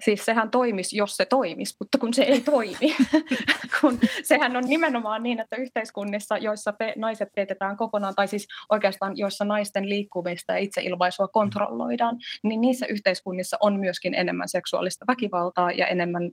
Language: Finnish